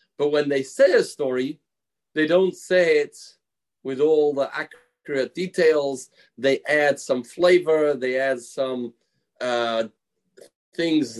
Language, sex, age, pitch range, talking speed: English, male, 30-49, 145-200 Hz, 130 wpm